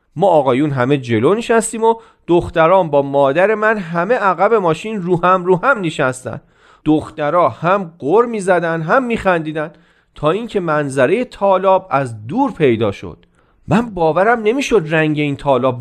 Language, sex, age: Persian, male, 40-59